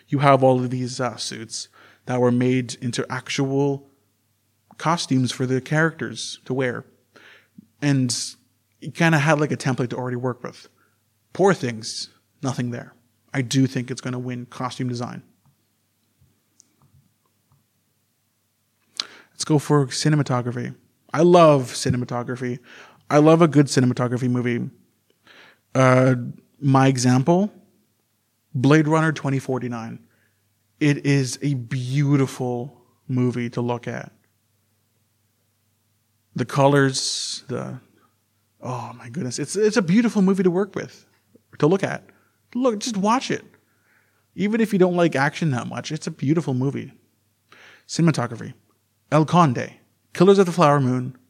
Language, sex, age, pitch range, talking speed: English, male, 30-49, 115-145 Hz, 130 wpm